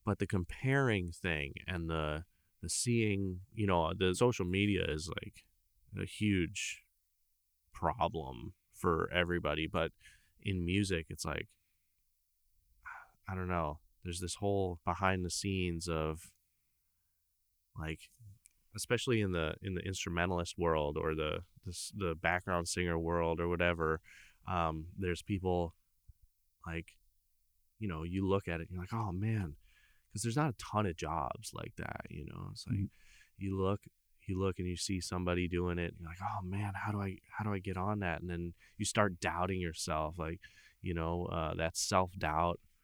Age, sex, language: 30-49, male, English